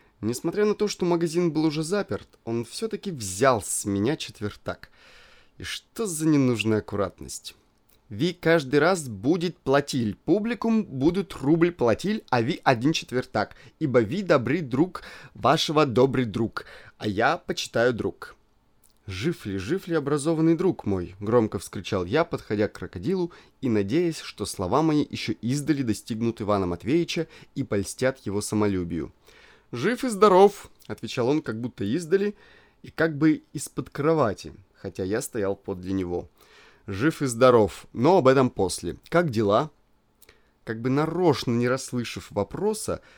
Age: 30-49